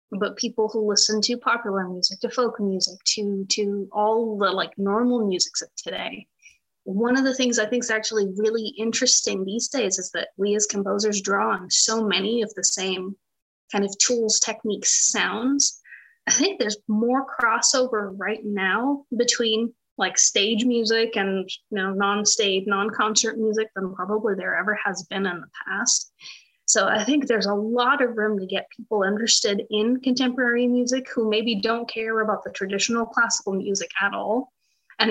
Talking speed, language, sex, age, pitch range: 170 wpm, English, female, 20-39, 200-230 Hz